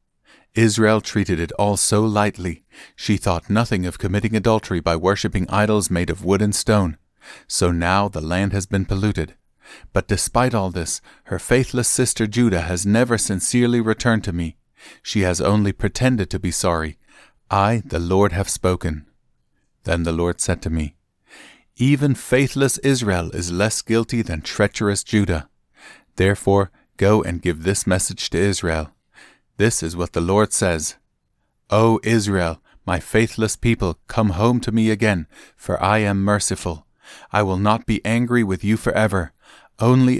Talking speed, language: 155 wpm, English